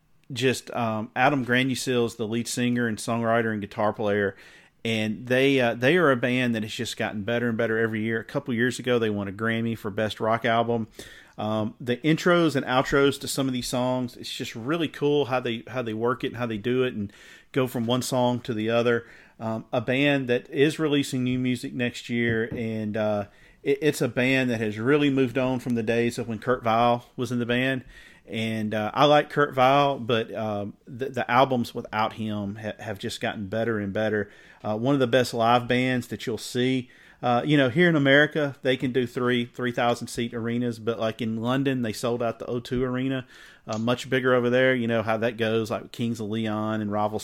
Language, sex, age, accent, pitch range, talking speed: English, male, 40-59, American, 115-130 Hz, 220 wpm